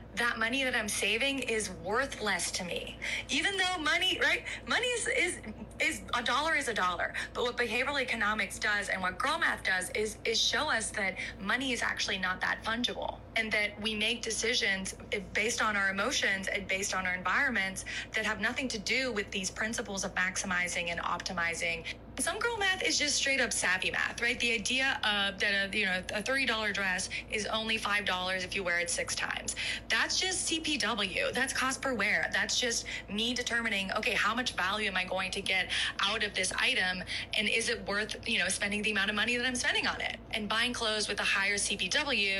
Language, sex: English, female